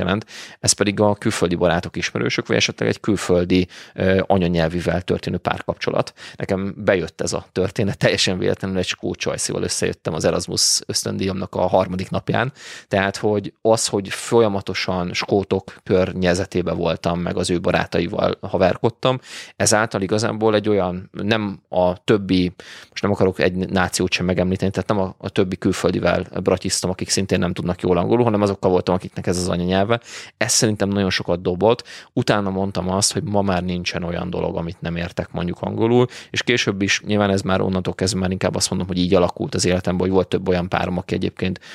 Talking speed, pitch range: 170 wpm, 90-100 Hz